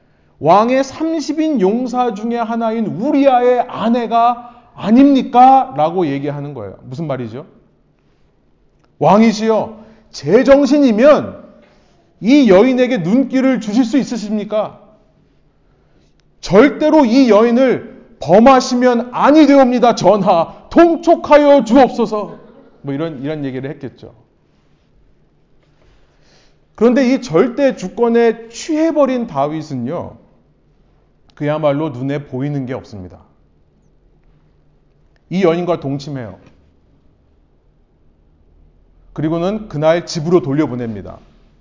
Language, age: Korean, 40-59